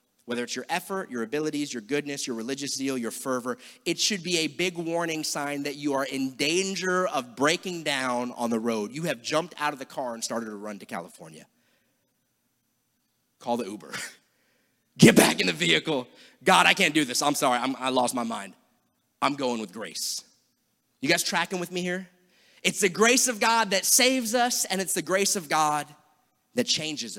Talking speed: 195 wpm